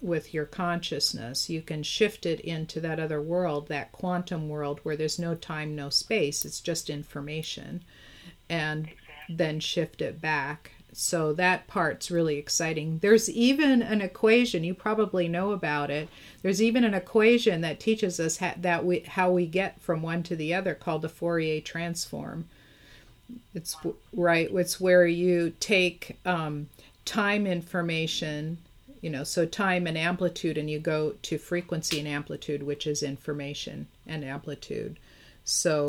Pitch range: 155-190 Hz